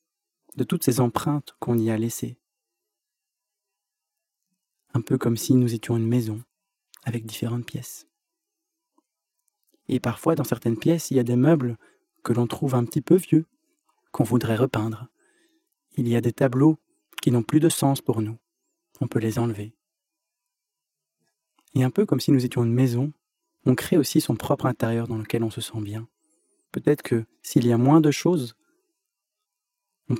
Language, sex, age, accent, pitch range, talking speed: French, male, 20-39, French, 120-195 Hz, 170 wpm